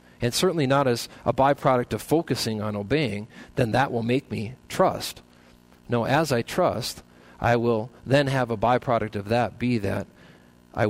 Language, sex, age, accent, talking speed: English, male, 40-59, American, 170 wpm